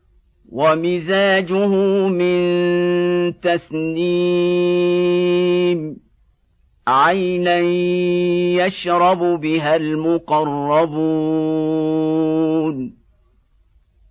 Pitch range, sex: 175-195 Hz, male